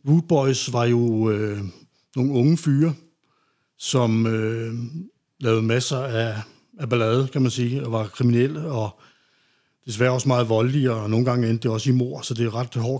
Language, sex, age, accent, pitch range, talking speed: Danish, male, 60-79, native, 115-135 Hz, 170 wpm